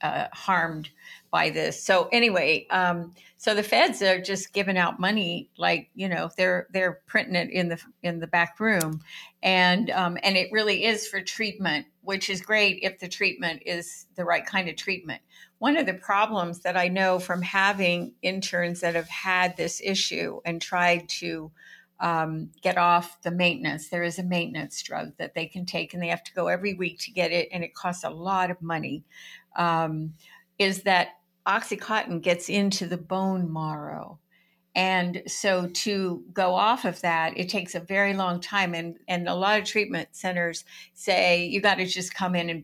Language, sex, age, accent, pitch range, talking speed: English, female, 60-79, American, 170-195 Hz, 190 wpm